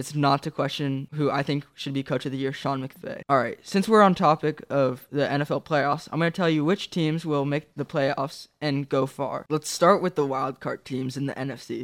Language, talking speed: English, 250 wpm